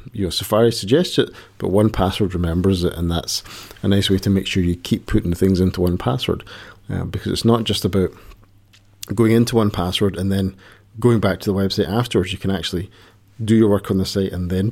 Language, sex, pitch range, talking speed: English, male, 95-110 Hz, 195 wpm